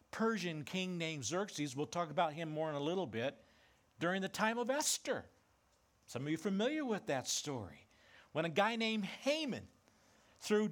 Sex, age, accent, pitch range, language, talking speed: male, 60-79, American, 125-205 Hz, English, 180 wpm